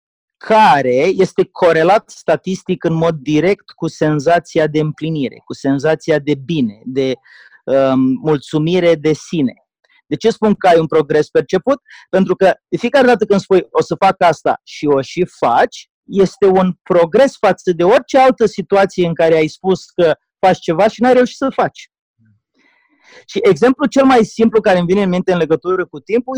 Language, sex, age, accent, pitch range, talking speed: Romanian, male, 30-49, native, 160-230 Hz, 175 wpm